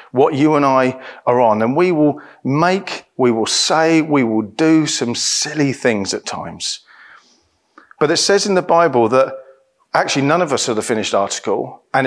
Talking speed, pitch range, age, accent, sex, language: 185 wpm, 125-170 Hz, 40-59, British, male, English